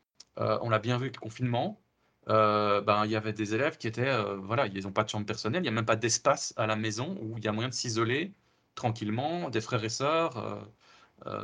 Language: French